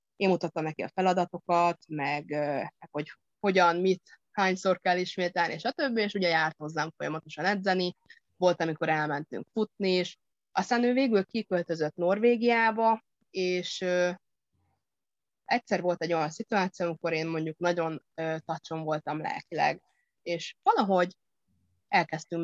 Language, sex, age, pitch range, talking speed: Hungarian, female, 30-49, 160-195 Hz, 125 wpm